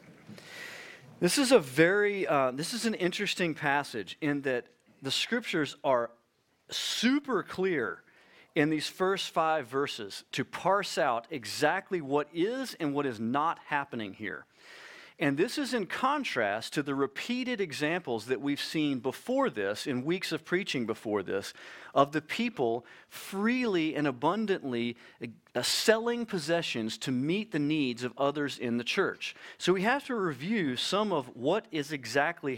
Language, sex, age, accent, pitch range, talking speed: English, male, 40-59, American, 140-205 Hz, 150 wpm